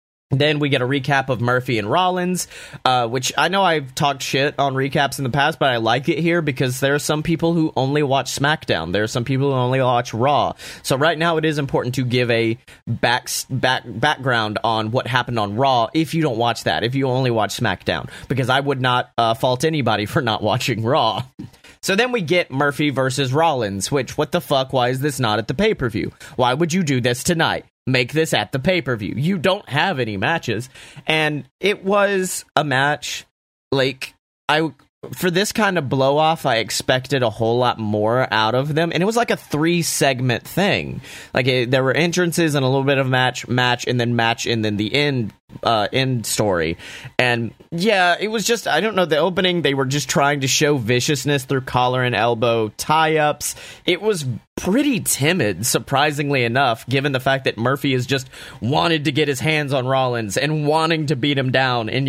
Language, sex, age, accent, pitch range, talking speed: English, male, 30-49, American, 125-155 Hz, 205 wpm